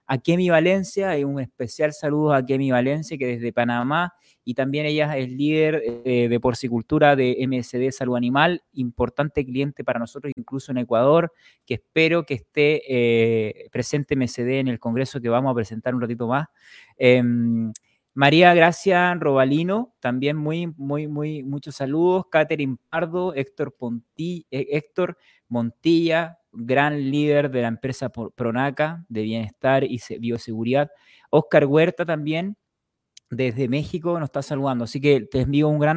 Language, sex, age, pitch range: Spanish, male, 20-39, 125-155 Hz